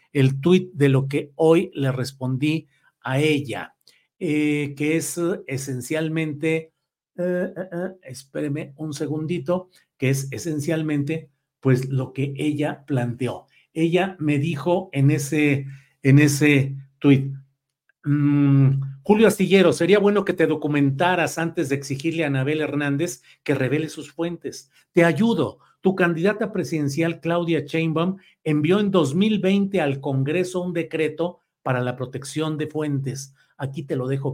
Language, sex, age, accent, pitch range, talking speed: Spanish, male, 50-69, Mexican, 140-175 Hz, 135 wpm